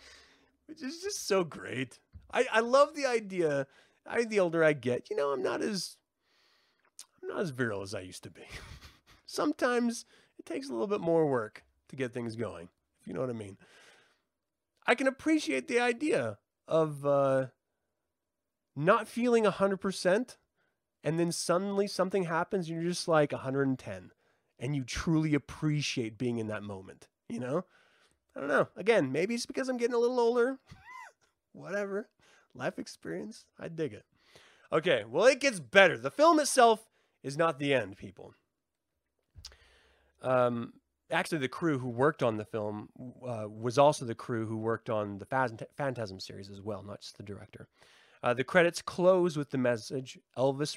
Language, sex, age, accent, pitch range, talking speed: English, male, 30-49, American, 125-200 Hz, 170 wpm